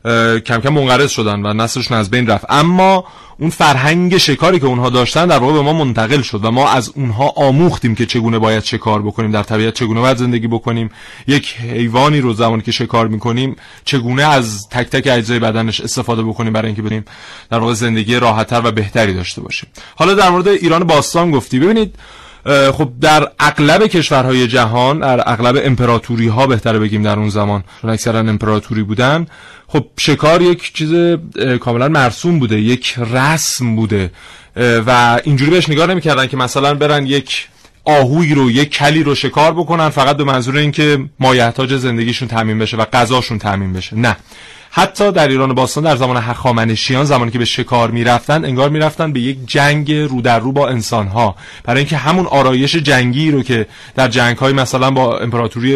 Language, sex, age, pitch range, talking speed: Persian, male, 30-49, 115-145 Hz, 180 wpm